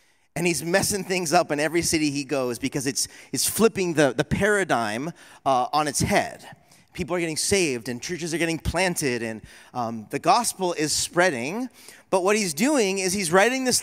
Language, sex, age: English, male, 30-49